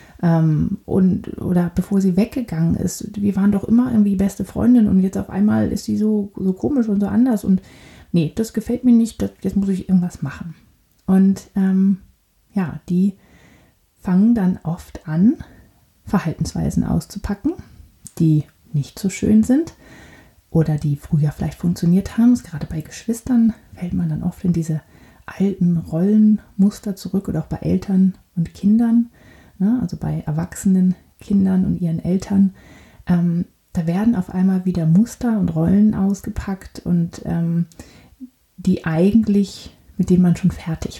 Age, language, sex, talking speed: 30-49, German, female, 150 wpm